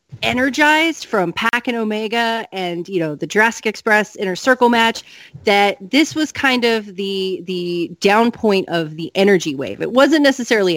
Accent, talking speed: American, 165 wpm